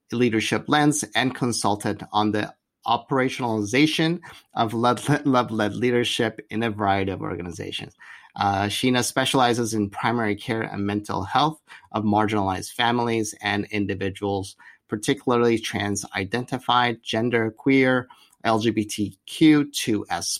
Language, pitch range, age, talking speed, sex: English, 105-125 Hz, 30-49, 105 wpm, male